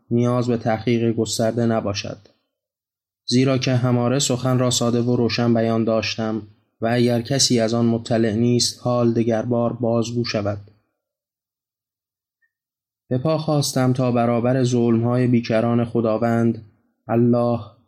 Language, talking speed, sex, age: Persian, 115 wpm, male, 20-39